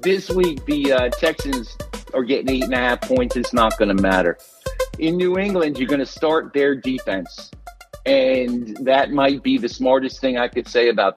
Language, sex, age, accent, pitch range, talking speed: English, male, 50-69, American, 130-170 Hz, 200 wpm